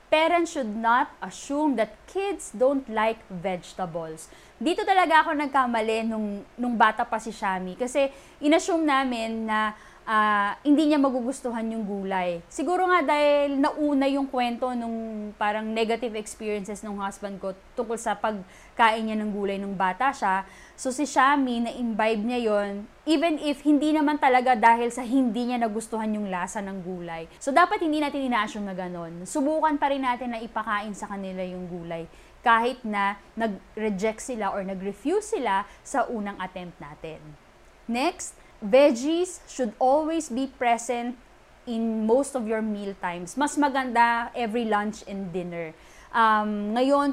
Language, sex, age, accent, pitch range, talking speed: Filipino, female, 20-39, native, 205-260 Hz, 150 wpm